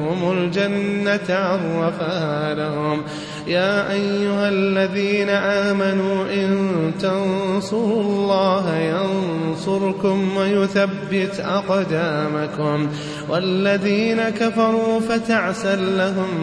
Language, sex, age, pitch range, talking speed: Arabic, male, 30-49, 165-220 Hz, 65 wpm